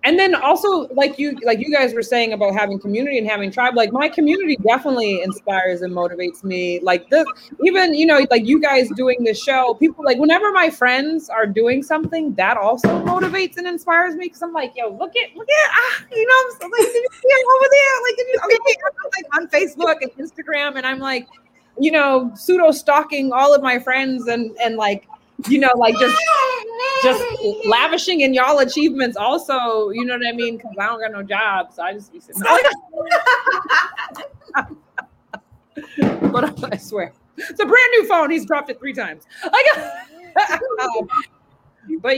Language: English